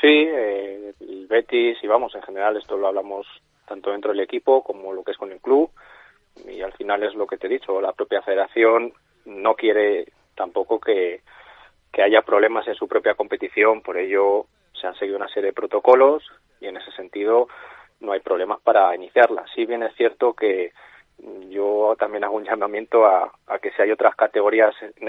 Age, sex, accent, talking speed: 30-49, male, Spanish, 190 wpm